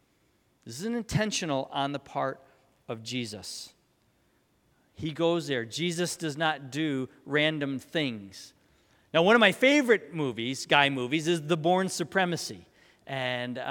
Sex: male